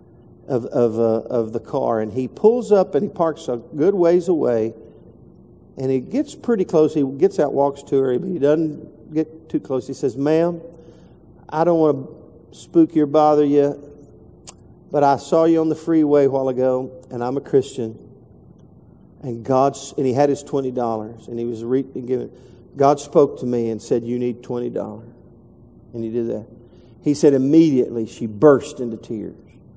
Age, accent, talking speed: 50-69, American, 185 wpm